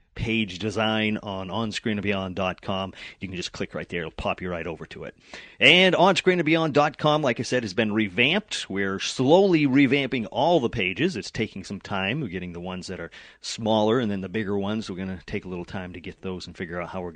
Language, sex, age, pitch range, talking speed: English, male, 30-49, 95-130 Hz, 215 wpm